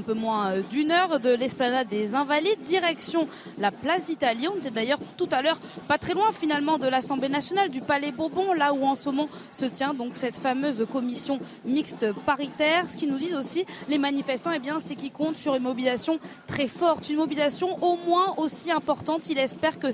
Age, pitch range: 20-39, 260-320 Hz